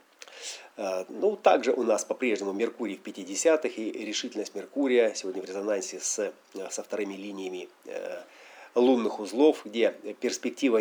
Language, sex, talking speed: Russian, male, 115 wpm